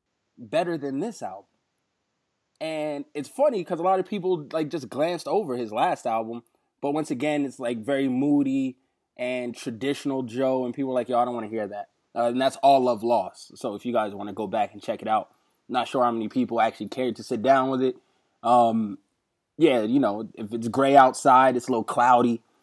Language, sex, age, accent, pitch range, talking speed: English, male, 20-39, American, 125-155 Hz, 215 wpm